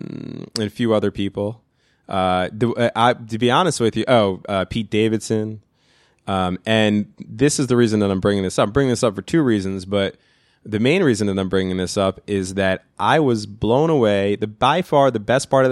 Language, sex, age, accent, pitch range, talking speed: English, male, 20-39, American, 100-120 Hz, 215 wpm